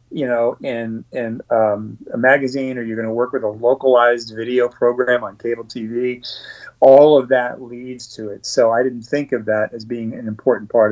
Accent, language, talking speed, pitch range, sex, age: American, English, 205 wpm, 120-145 Hz, male, 30-49